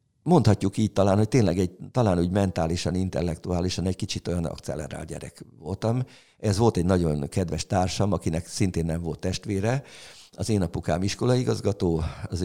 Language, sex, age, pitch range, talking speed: Hungarian, male, 50-69, 85-120 Hz, 160 wpm